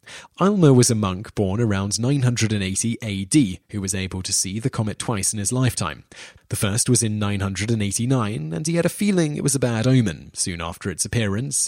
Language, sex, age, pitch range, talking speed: English, male, 30-49, 100-125 Hz, 195 wpm